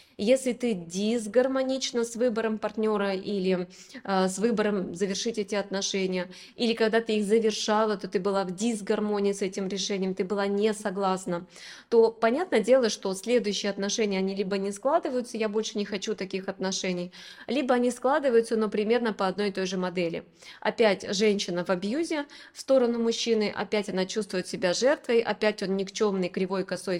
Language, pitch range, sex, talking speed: Russian, 195-230 Hz, female, 165 wpm